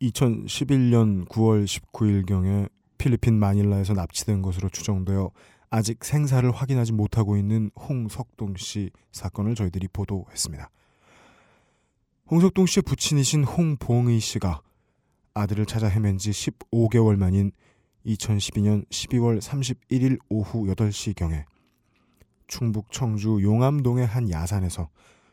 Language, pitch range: Korean, 95-115 Hz